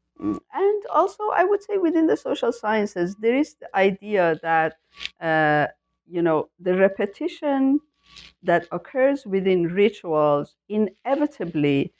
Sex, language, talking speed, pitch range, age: female, English, 120 wpm, 165-240 Hz, 60-79